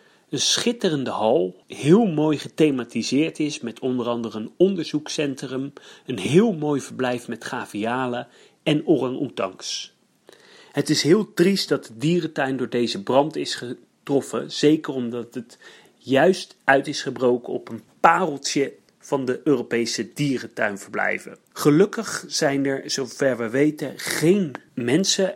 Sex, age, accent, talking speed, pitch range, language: male, 40-59, Dutch, 130 wpm, 120-155 Hz, Dutch